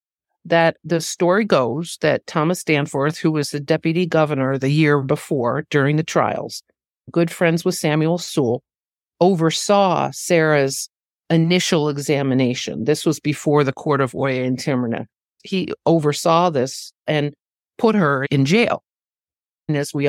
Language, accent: English, American